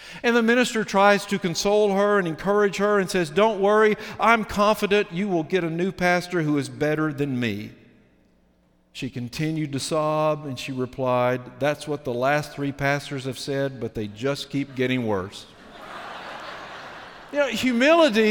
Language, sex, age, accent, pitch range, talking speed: English, male, 50-69, American, 135-210 Hz, 165 wpm